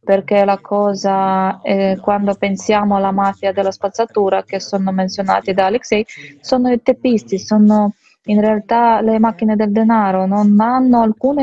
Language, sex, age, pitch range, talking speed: Italian, female, 20-39, 195-220 Hz, 145 wpm